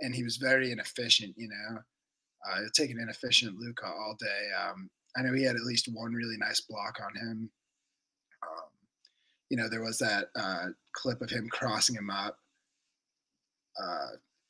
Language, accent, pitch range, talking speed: English, American, 120-165 Hz, 165 wpm